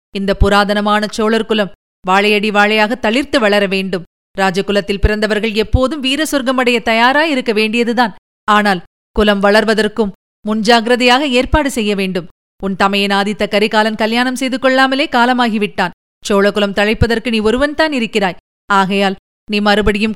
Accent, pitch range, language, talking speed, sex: native, 200-250 Hz, Tamil, 115 wpm, female